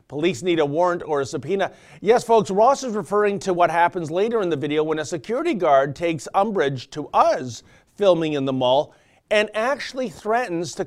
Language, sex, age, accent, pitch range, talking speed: English, male, 40-59, American, 145-210 Hz, 195 wpm